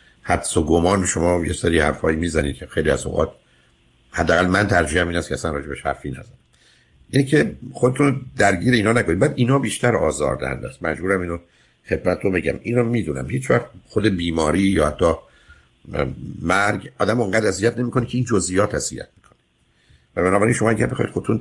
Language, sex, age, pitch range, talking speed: Persian, male, 60-79, 75-100 Hz, 165 wpm